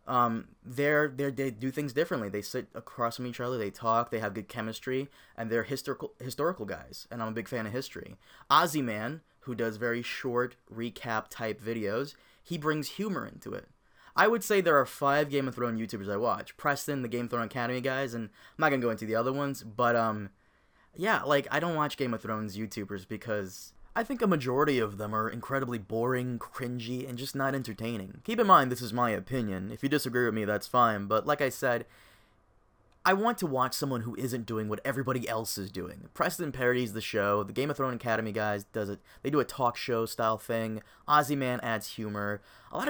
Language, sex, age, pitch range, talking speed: English, male, 20-39, 110-135 Hz, 215 wpm